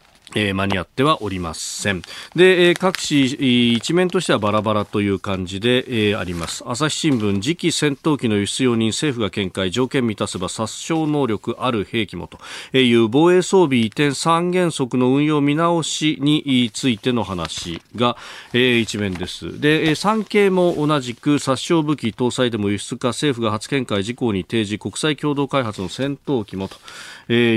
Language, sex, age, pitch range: Japanese, male, 40-59, 105-150 Hz